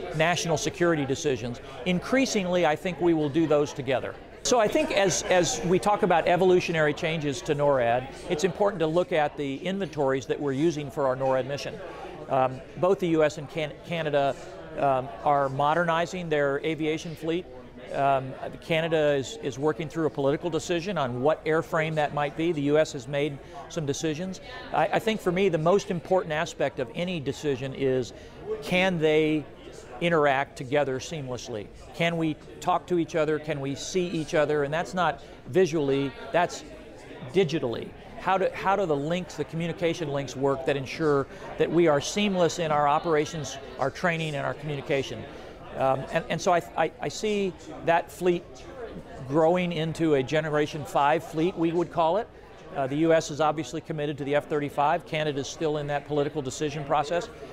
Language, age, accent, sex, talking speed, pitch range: English, 50-69, American, male, 175 wpm, 140-170 Hz